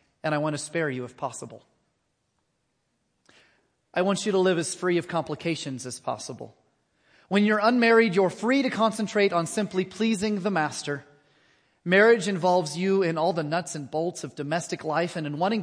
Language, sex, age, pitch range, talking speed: English, male, 30-49, 155-205 Hz, 175 wpm